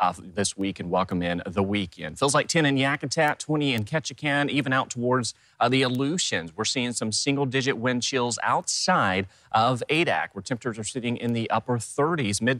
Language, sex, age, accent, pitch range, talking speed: English, male, 30-49, American, 100-135 Hz, 190 wpm